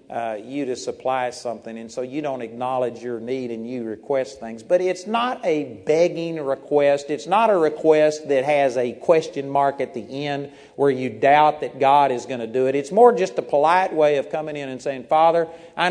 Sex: male